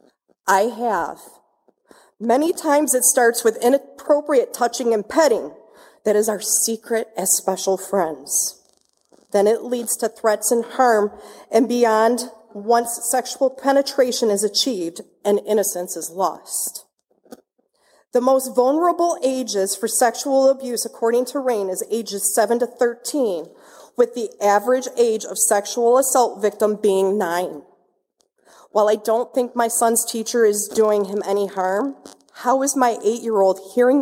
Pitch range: 205-255 Hz